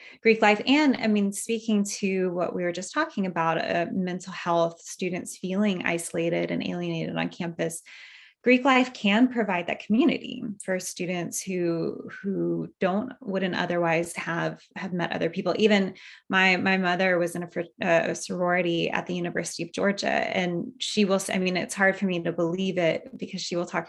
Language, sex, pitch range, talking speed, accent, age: English, female, 175-220 Hz, 180 wpm, American, 20-39